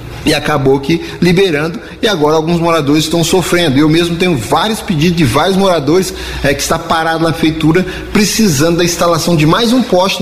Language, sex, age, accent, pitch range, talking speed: Portuguese, male, 30-49, Brazilian, 145-175 Hz, 175 wpm